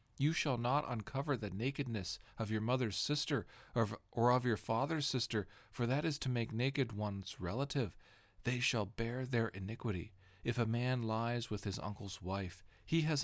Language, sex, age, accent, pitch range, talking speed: English, male, 40-59, American, 105-135 Hz, 175 wpm